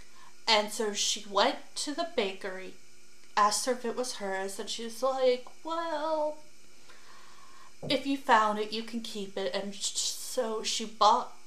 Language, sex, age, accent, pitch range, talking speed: English, female, 30-49, American, 200-240 Hz, 155 wpm